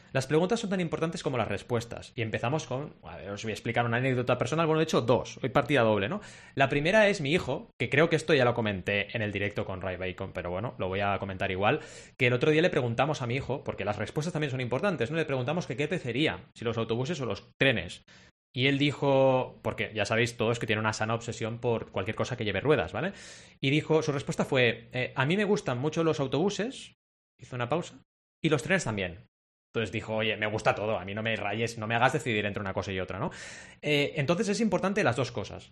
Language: Spanish